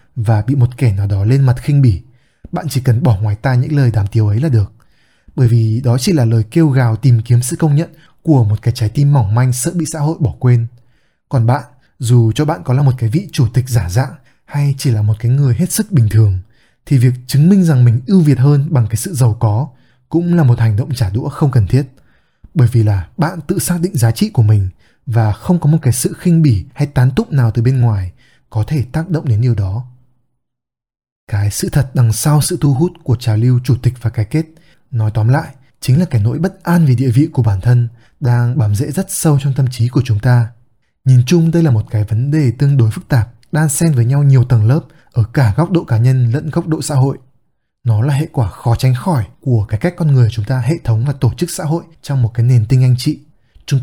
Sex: male